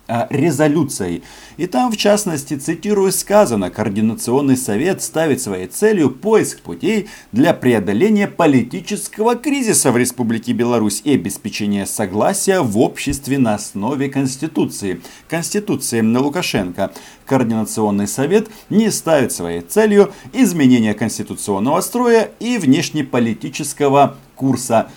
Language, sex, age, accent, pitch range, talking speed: Russian, male, 50-69, native, 110-165 Hz, 105 wpm